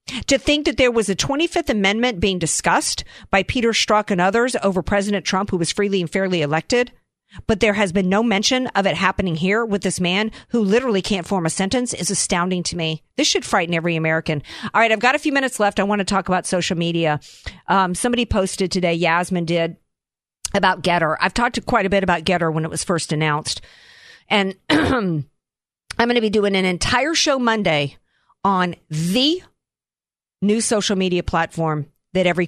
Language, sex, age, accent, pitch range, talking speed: English, female, 50-69, American, 170-210 Hz, 195 wpm